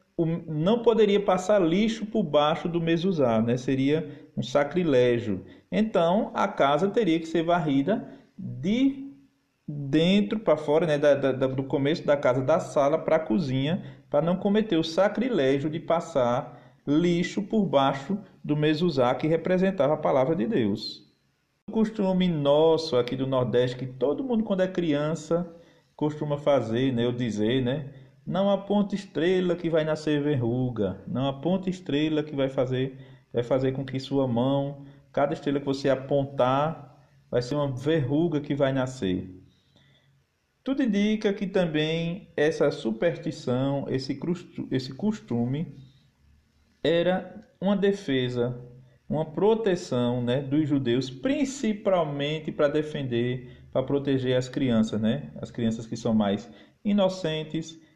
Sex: male